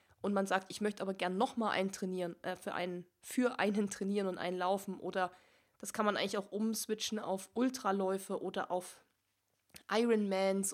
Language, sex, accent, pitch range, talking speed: German, female, German, 190-240 Hz, 180 wpm